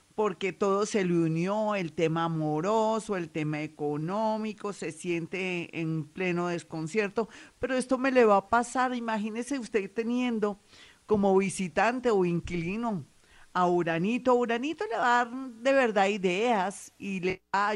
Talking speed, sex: 150 wpm, female